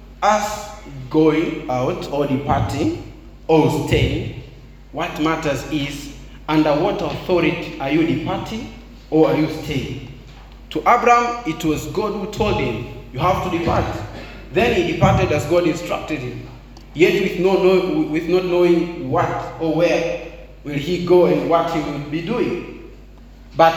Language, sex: English, male